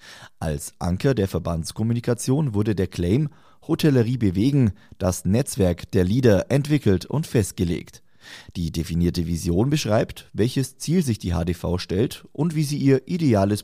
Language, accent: German, German